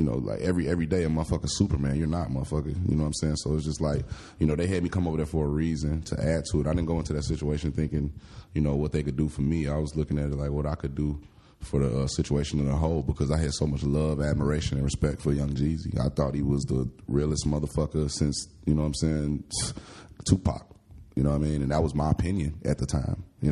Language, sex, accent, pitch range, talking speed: English, male, American, 70-80 Hz, 275 wpm